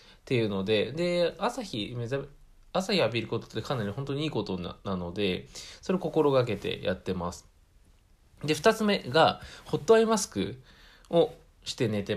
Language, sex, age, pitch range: Japanese, male, 20-39, 95-130 Hz